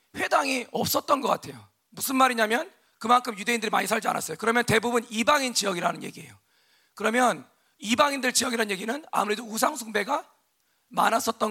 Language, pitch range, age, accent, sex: Korean, 210-255 Hz, 40-59, native, male